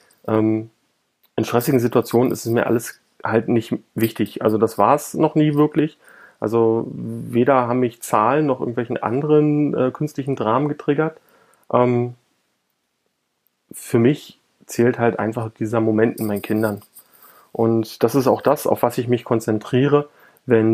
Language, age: German, 30-49